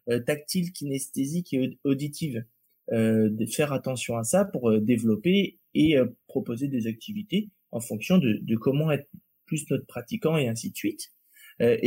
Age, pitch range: 20-39, 120-180 Hz